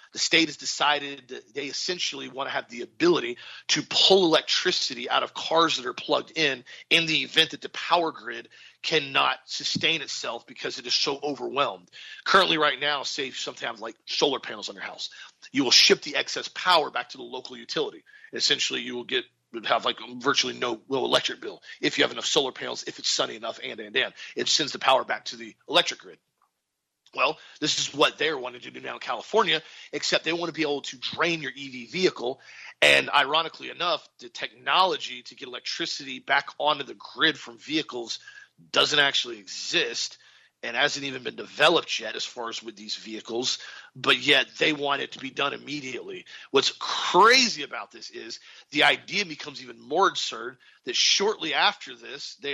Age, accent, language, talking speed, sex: 40-59, American, English, 190 wpm, male